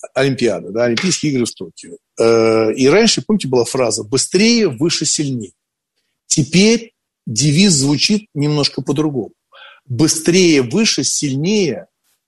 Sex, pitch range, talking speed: male, 125-175 Hz, 110 wpm